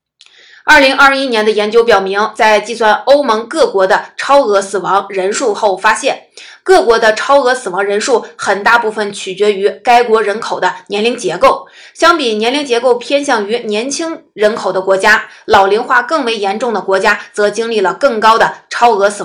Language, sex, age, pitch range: Chinese, female, 20-39, 205-260 Hz